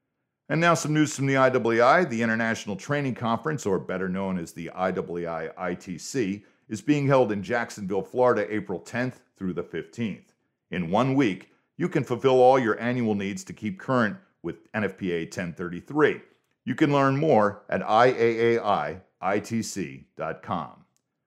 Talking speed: 145 wpm